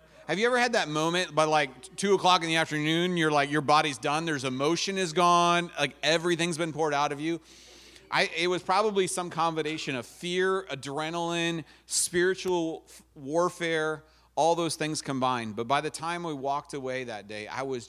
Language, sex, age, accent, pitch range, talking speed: English, male, 40-59, American, 110-155 Hz, 185 wpm